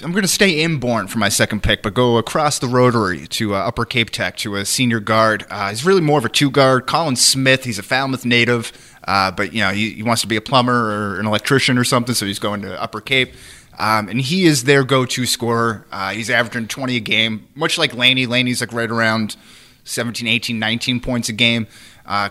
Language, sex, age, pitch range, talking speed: English, male, 30-49, 110-135 Hz, 230 wpm